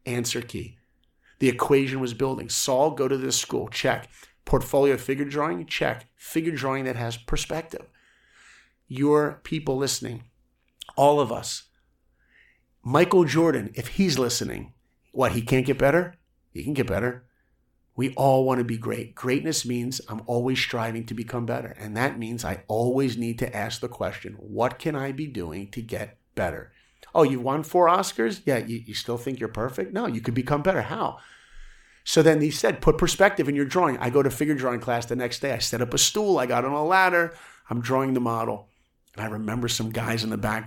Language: English